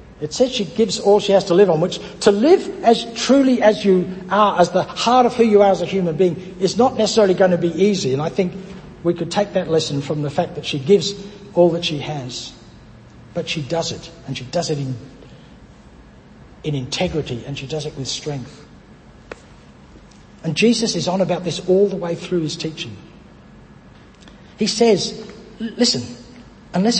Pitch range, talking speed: 150-205 Hz, 195 wpm